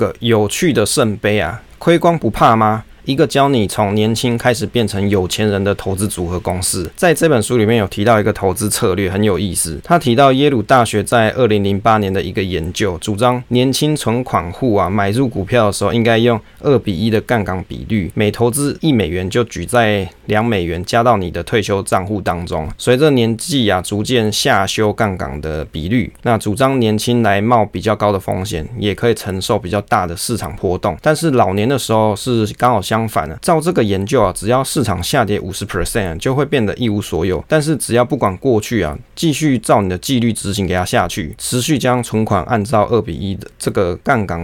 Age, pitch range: 20-39, 100-120 Hz